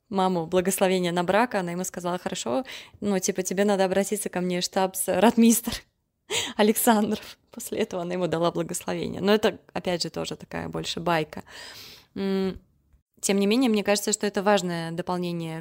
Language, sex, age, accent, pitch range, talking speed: Russian, female, 20-39, native, 180-225 Hz, 160 wpm